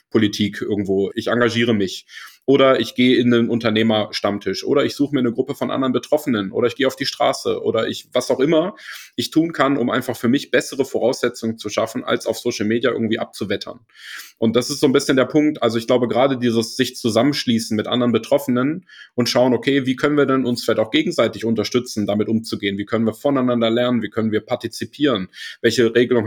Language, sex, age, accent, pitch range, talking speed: German, male, 30-49, German, 110-130 Hz, 205 wpm